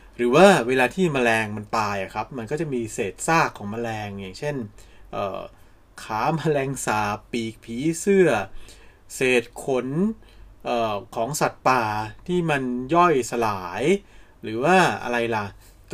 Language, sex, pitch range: Thai, male, 105-145 Hz